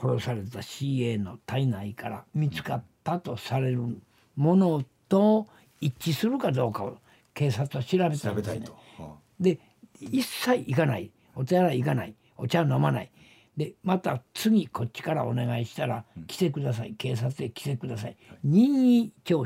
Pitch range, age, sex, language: 115-165 Hz, 60-79, male, Japanese